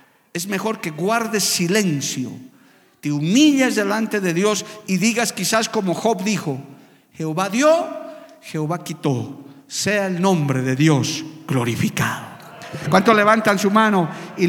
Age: 50-69